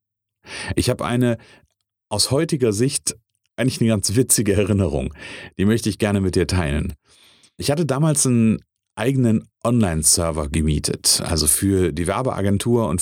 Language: German